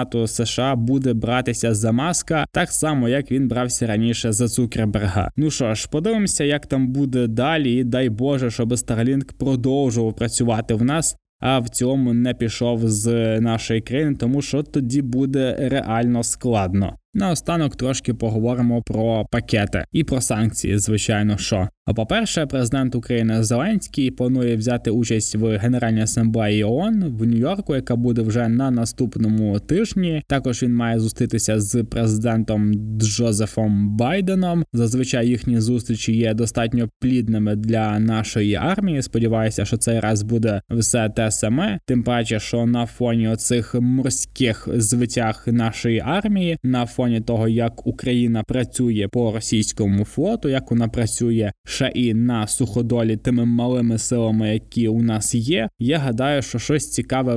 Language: Ukrainian